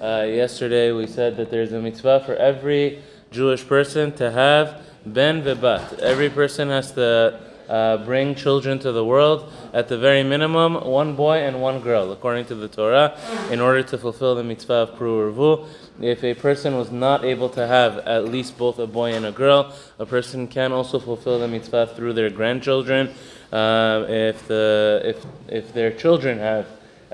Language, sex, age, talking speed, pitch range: English, male, 20-39, 175 wpm, 110-135 Hz